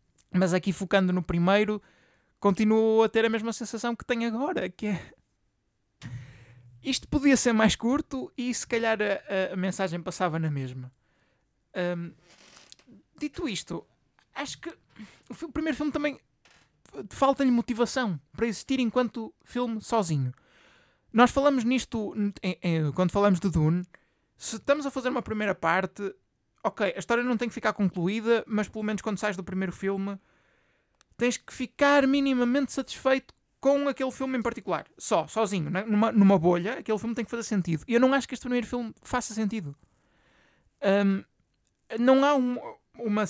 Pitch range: 185-240 Hz